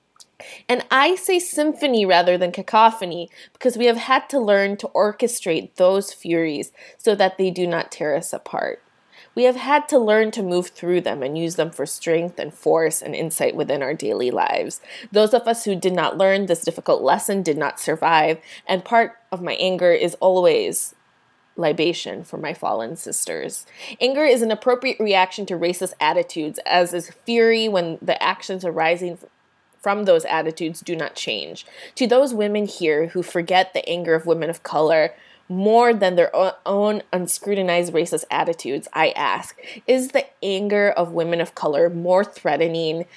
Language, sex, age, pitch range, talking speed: English, female, 20-39, 170-230 Hz, 170 wpm